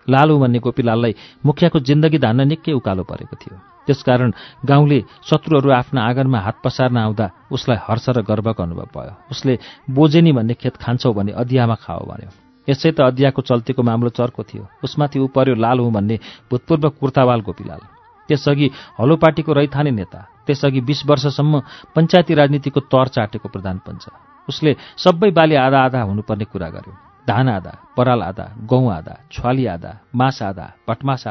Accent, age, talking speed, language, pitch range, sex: Indian, 40-59, 105 wpm, English, 115-145 Hz, male